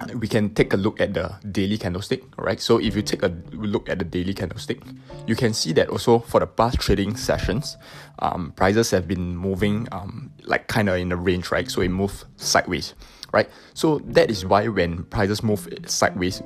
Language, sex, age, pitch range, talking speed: English, male, 20-39, 95-115 Hz, 205 wpm